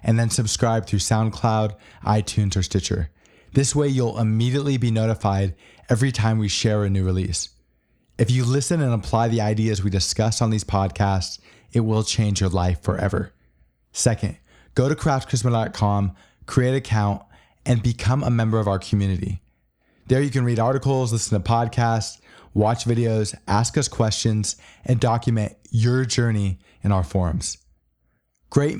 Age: 20-39